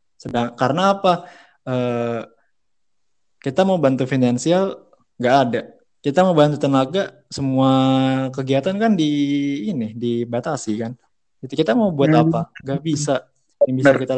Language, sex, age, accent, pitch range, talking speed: Indonesian, male, 20-39, native, 120-140 Hz, 130 wpm